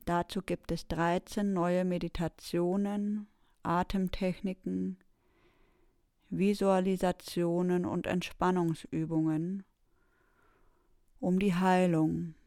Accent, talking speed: German, 65 wpm